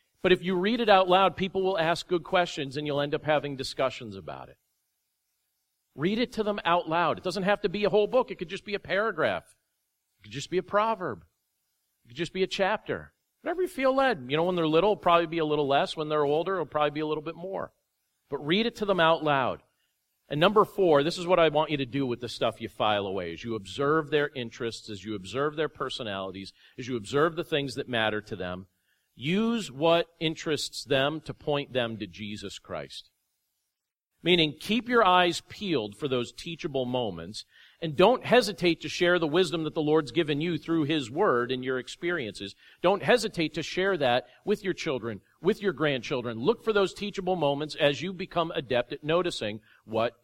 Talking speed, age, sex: 215 wpm, 40-59, male